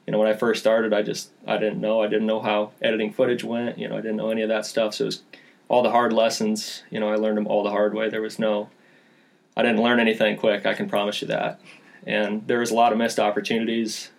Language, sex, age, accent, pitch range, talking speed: English, male, 20-39, American, 105-115 Hz, 270 wpm